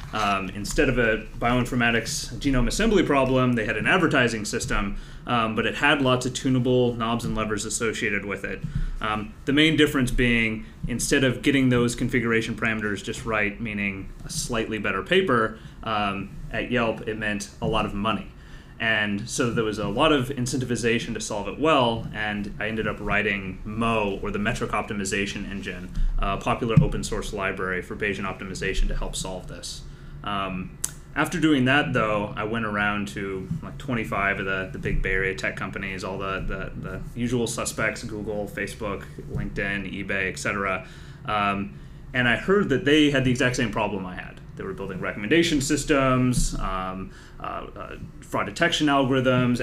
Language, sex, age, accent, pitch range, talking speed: English, male, 30-49, American, 105-130 Hz, 170 wpm